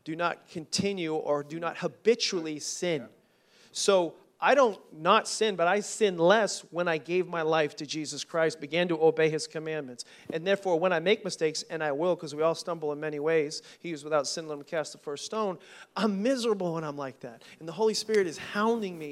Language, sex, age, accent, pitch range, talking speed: English, male, 40-59, American, 150-195 Hz, 215 wpm